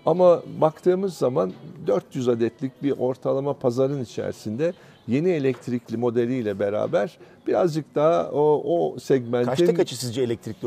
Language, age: Turkish, 50-69